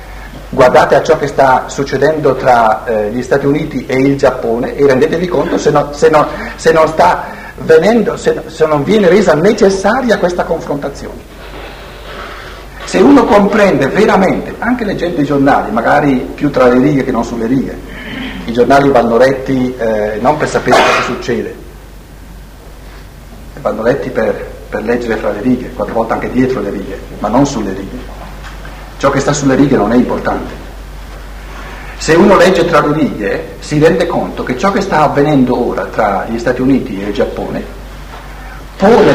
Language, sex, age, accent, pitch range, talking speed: Italian, male, 50-69, native, 125-170 Hz, 160 wpm